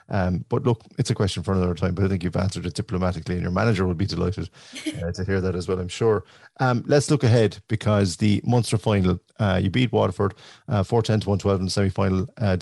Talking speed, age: 245 wpm, 30-49